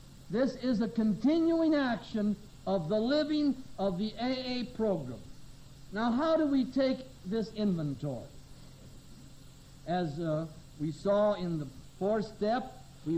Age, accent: 60-79, American